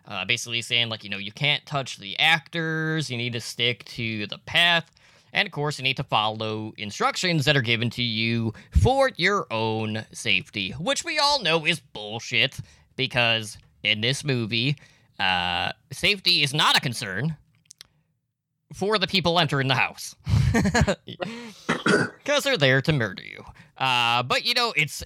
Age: 20-39